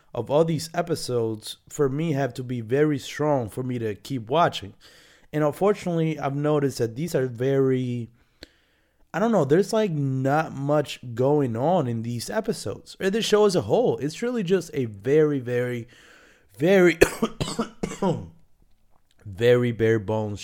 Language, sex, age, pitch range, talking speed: English, male, 20-39, 110-155 Hz, 155 wpm